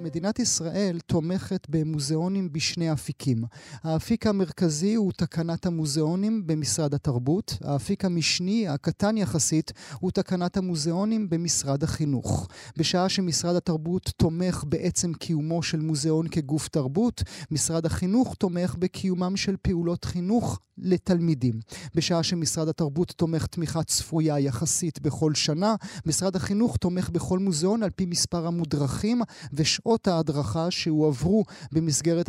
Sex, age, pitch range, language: male, 30-49, 155-185 Hz, Hebrew